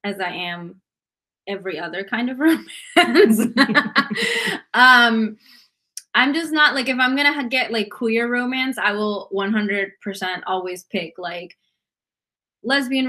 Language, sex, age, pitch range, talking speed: English, female, 20-39, 205-270 Hz, 130 wpm